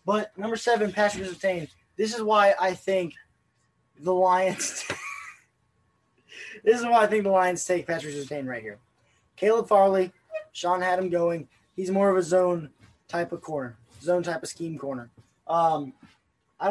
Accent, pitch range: American, 165-195 Hz